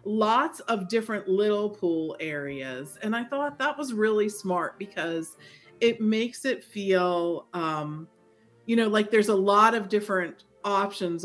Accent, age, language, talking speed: American, 40-59, English, 150 wpm